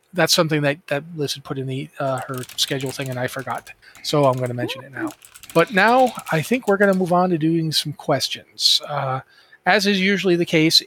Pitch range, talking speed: 135-175 Hz, 230 wpm